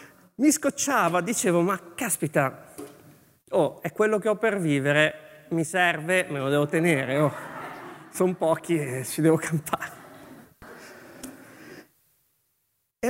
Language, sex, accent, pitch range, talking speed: Italian, male, native, 145-195 Hz, 120 wpm